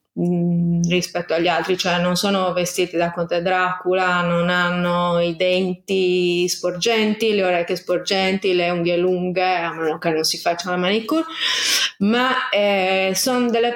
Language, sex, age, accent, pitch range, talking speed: Italian, female, 20-39, native, 180-230 Hz, 145 wpm